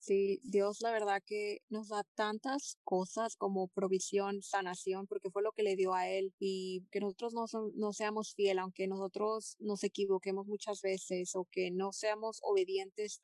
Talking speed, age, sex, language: 175 wpm, 20-39, female, Spanish